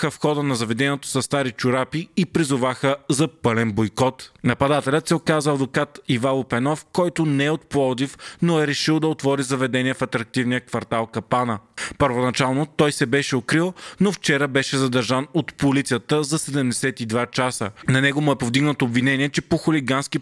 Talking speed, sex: 165 wpm, male